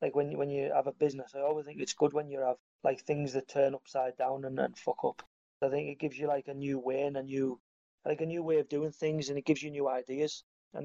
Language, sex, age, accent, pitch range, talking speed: English, male, 30-49, British, 130-155 Hz, 280 wpm